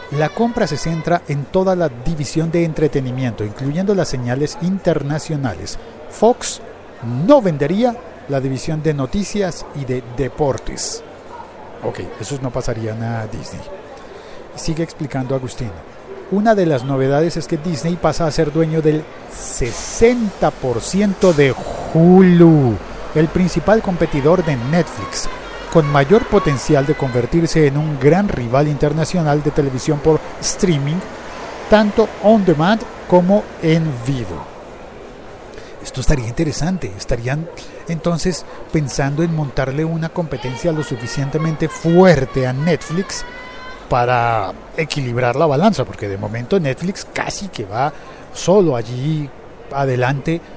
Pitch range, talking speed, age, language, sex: 130-170 Hz, 120 wpm, 50-69, Spanish, male